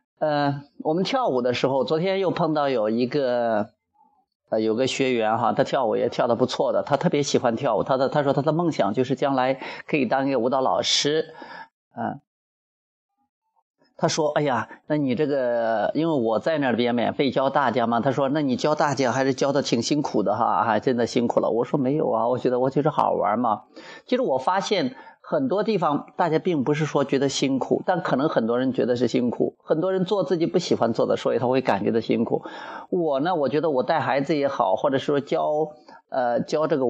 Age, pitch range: 30-49, 135-200 Hz